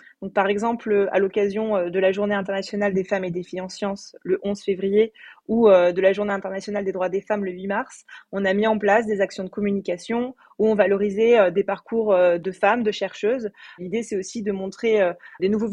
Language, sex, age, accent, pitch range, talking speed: French, female, 20-39, French, 195-230 Hz, 215 wpm